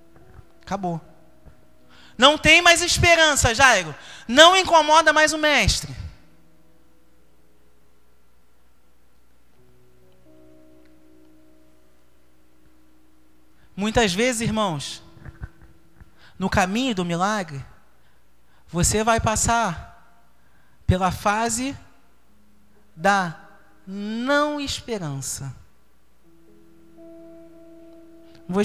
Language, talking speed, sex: Portuguese, 55 wpm, male